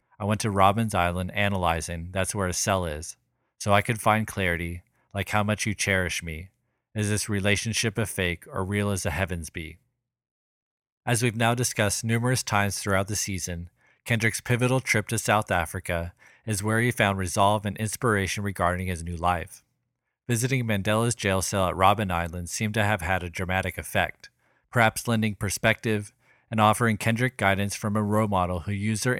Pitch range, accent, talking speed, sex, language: 95-110 Hz, American, 180 wpm, male, English